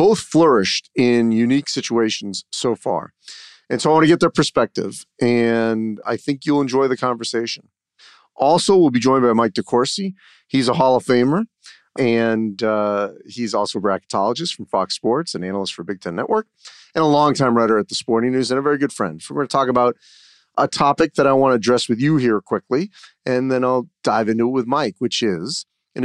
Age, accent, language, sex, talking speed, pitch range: 40-59, American, English, male, 205 wpm, 115-145 Hz